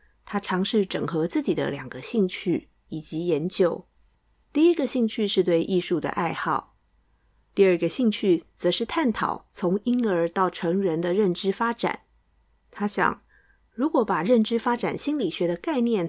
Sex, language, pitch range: female, Chinese, 170-220 Hz